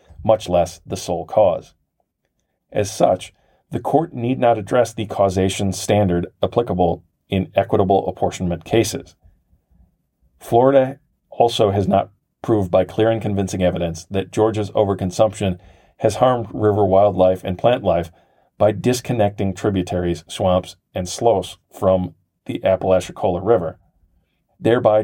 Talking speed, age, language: 120 wpm, 40-59, English